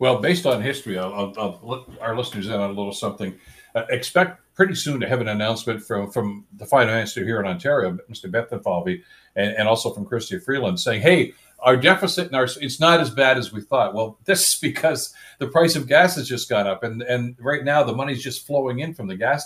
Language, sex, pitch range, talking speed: English, male, 110-145 Hz, 230 wpm